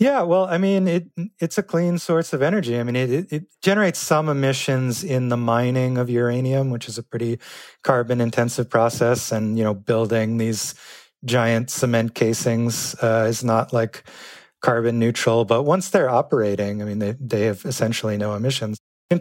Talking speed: 180 wpm